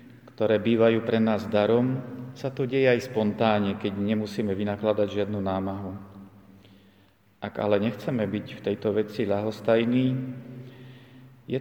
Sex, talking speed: male, 125 wpm